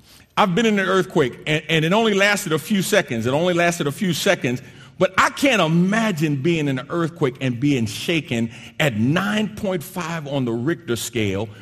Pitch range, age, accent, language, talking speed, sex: 110-170 Hz, 50-69, American, English, 185 wpm, male